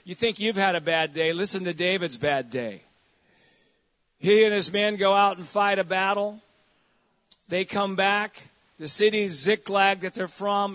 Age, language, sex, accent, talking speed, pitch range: 40-59, English, male, American, 175 wpm, 175-205 Hz